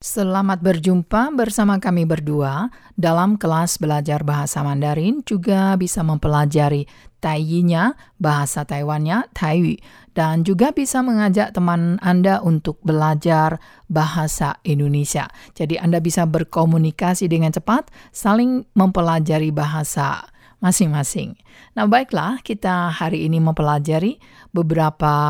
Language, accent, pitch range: Chinese, Indonesian, 155-195 Hz